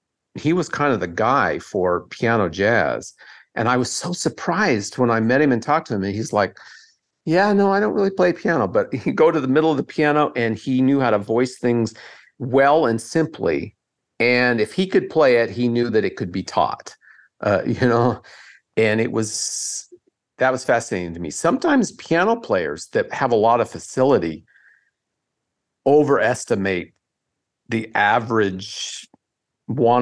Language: English